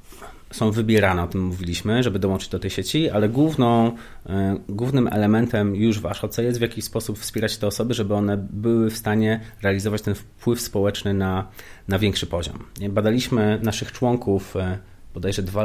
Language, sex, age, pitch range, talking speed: Polish, male, 30-49, 100-120 Hz, 160 wpm